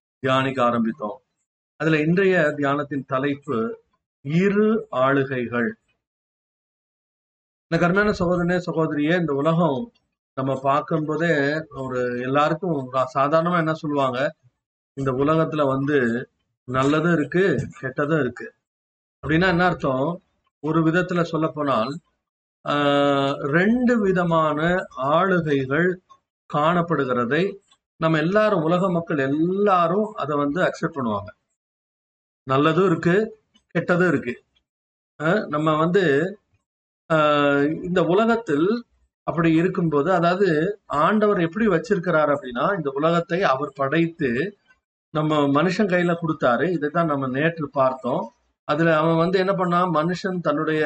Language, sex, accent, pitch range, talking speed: Tamil, male, native, 140-180 Hz, 95 wpm